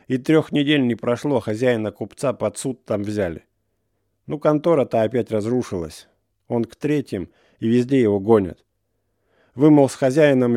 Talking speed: 140 wpm